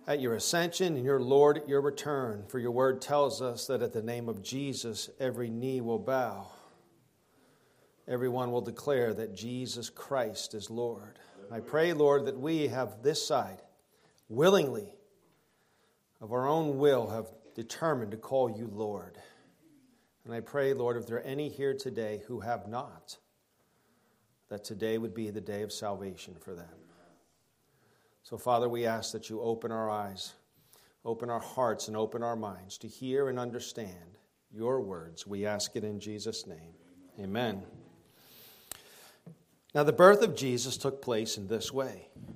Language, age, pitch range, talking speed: English, 40-59, 110-140 Hz, 160 wpm